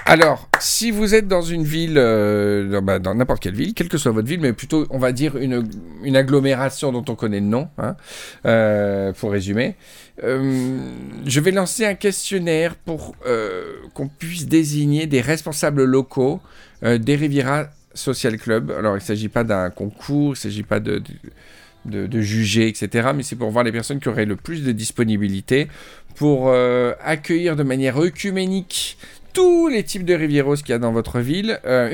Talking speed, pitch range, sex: 190 wpm, 115-165 Hz, male